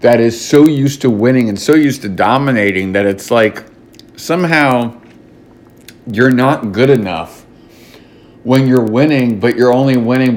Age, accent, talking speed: 50-69, American, 150 wpm